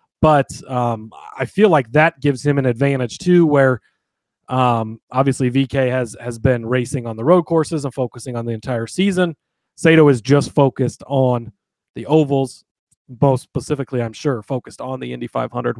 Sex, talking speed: male, 170 wpm